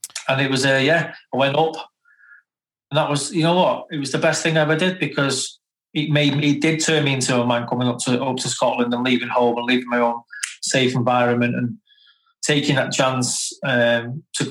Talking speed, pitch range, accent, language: 225 wpm, 125-155 Hz, British, English